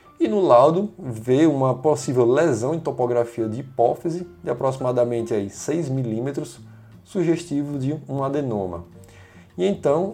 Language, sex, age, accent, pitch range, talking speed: Portuguese, male, 20-39, Brazilian, 115-165 Hz, 130 wpm